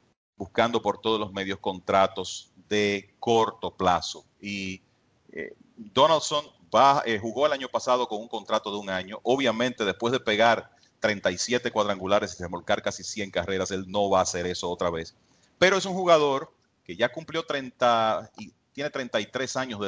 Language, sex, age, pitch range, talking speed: English, male, 30-49, 100-125 Hz, 170 wpm